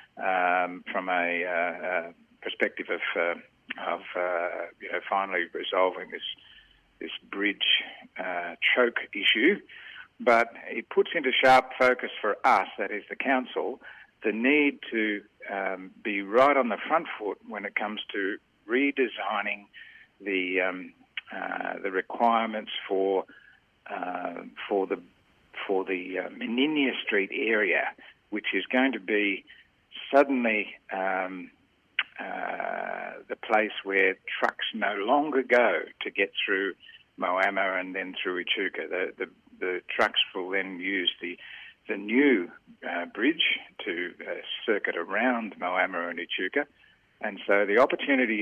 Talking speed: 135 wpm